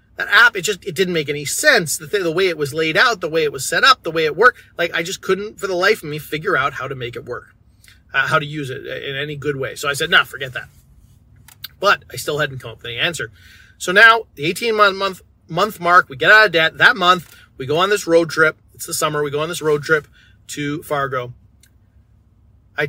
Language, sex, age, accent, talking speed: English, male, 30-49, American, 260 wpm